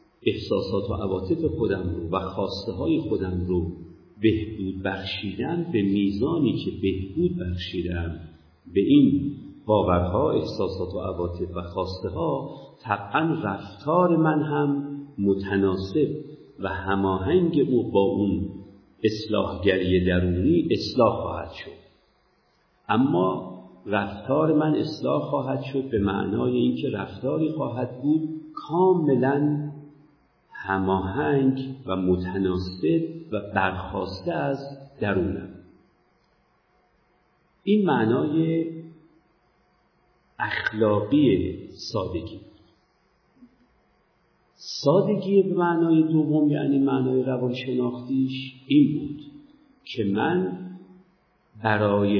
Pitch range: 95-155 Hz